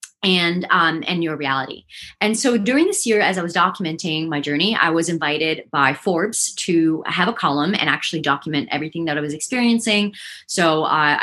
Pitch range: 155-210 Hz